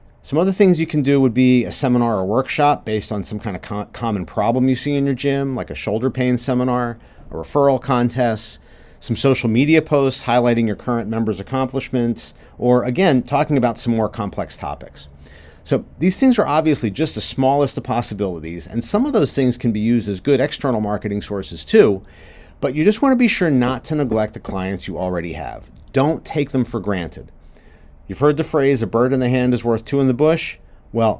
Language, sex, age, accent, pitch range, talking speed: English, male, 40-59, American, 95-140 Hz, 210 wpm